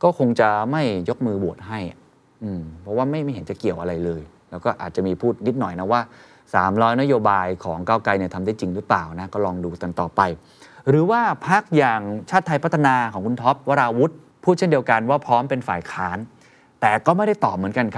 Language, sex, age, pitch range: Thai, male, 20-39, 95-130 Hz